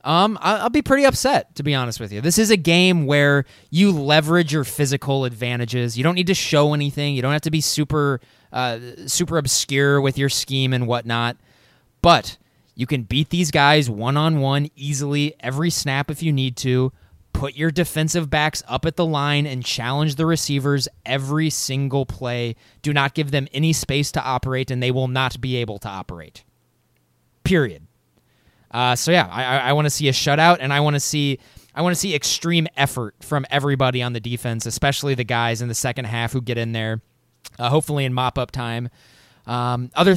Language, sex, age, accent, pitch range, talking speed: English, male, 20-39, American, 120-150 Hz, 195 wpm